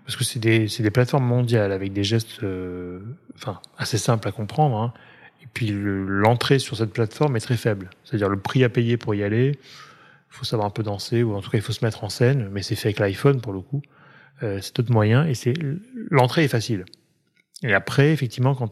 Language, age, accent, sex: French, 30-49, French, male